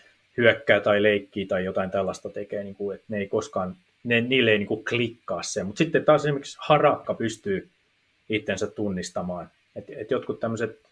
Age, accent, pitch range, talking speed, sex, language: 30-49, native, 100-125 Hz, 175 wpm, male, Finnish